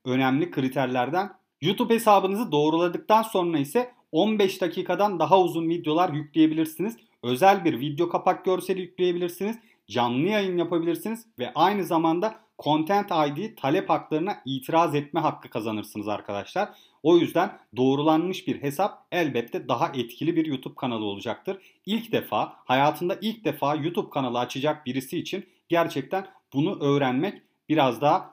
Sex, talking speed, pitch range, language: male, 130 wpm, 140-185 Hz, Turkish